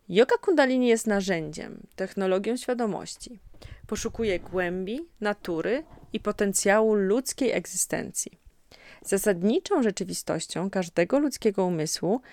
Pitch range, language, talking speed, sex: 185-230 Hz, Polish, 90 wpm, female